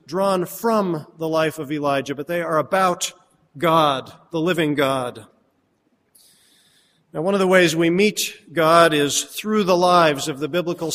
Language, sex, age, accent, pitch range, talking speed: English, male, 40-59, American, 155-180 Hz, 160 wpm